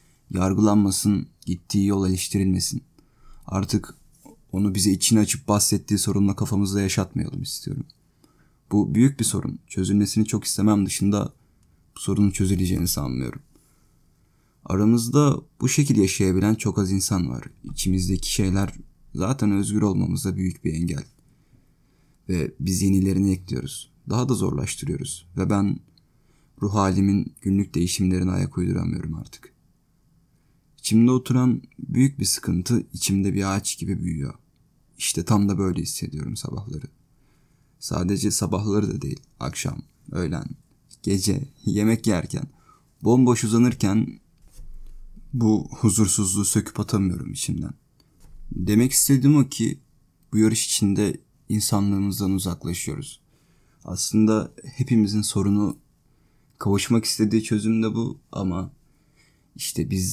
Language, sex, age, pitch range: Turkish, male, 30-49, 95-115 Hz